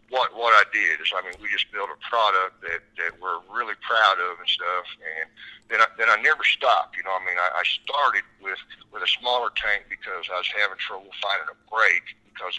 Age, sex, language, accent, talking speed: 60-79, male, English, American, 230 wpm